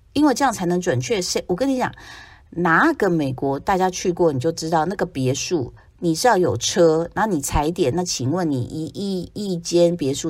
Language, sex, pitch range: Chinese, female, 130-175 Hz